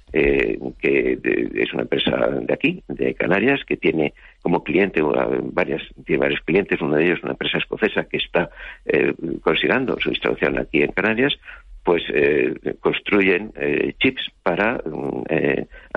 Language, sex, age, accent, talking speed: Spanish, male, 60-79, Spanish, 145 wpm